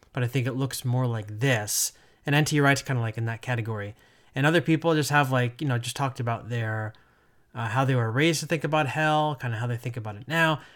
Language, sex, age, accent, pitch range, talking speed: English, male, 20-39, American, 120-150 Hz, 255 wpm